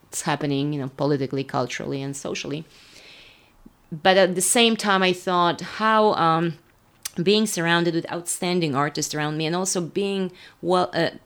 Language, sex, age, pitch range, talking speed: English, female, 30-49, 150-180 Hz, 145 wpm